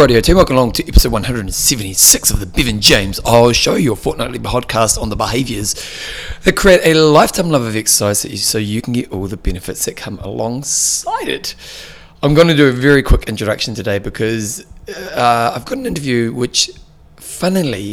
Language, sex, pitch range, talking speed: English, male, 105-125 Hz, 175 wpm